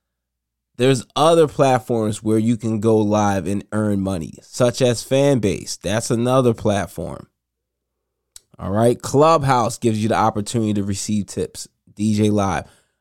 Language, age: English, 20-39